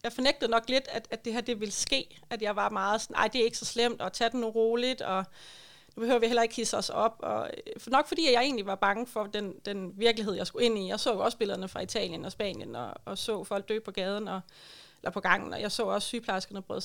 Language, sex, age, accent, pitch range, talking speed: Danish, female, 30-49, native, 205-245 Hz, 270 wpm